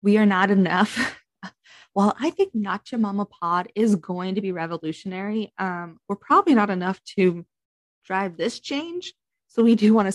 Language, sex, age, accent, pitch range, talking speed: English, female, 20-39, American, 170-215 Hz, 170 wpm